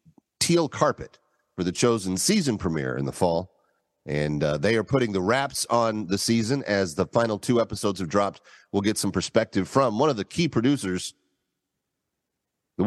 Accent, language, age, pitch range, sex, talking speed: American, English, 40-59, 90-140 Hz, male, 175 wpm